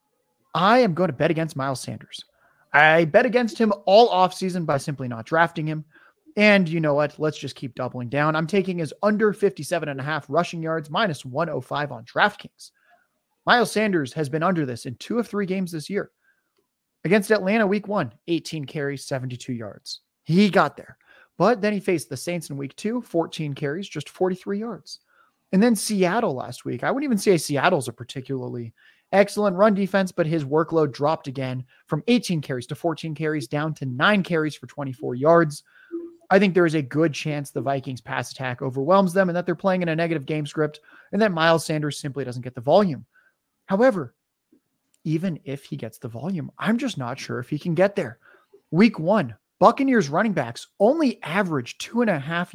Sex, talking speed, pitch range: male, 195 wpm, 145-200 Hz